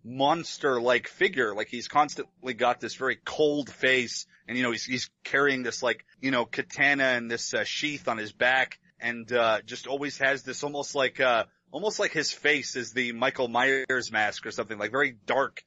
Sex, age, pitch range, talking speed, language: male, 30-49, 120-135 Hz, 195 wpm, English